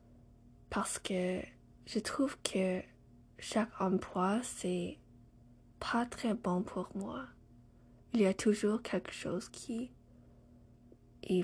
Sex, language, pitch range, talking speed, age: female, English, 120-195 Hz, 110 wpm, 10-29